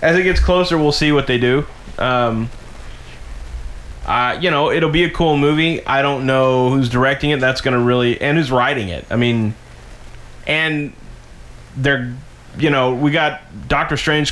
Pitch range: 115-145 Hz